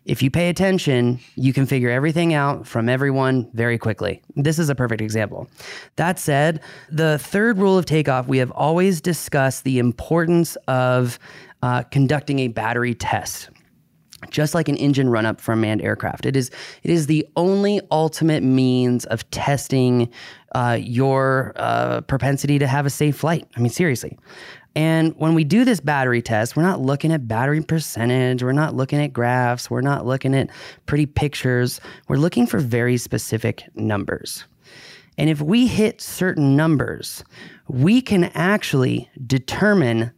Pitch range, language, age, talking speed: 125-165 Hz, English, 20-39, 160 wpm